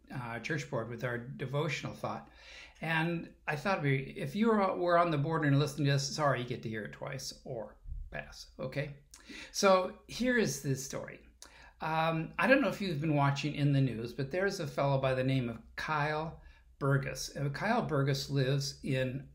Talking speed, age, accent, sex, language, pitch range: 190 wpm, 60-79, American, male, English, 125-170 Hz